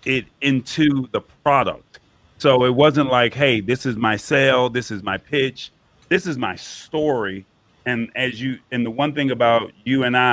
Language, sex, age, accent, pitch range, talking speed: English, male, 40-59, American, 120-140 Hz, 180 wpm